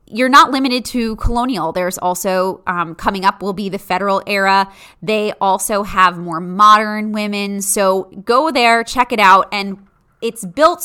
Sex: female